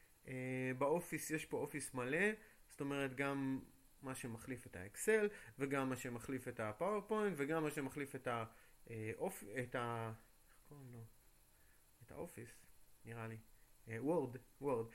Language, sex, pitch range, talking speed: Hebrew, male, 120-155 Hz, 120 wpm